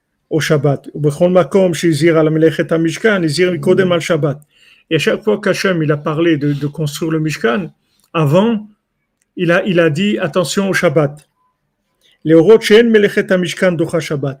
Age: 50-69